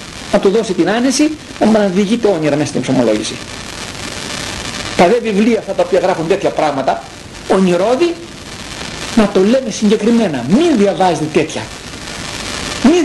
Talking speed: 140 wpm